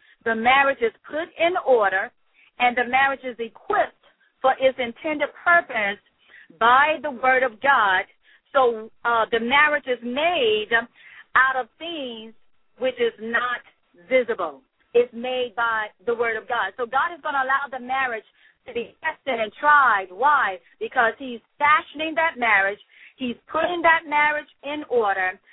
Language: English